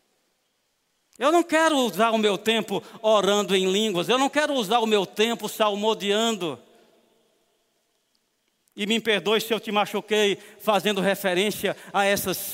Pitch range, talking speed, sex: 205-245 Hz, 140 wpm, male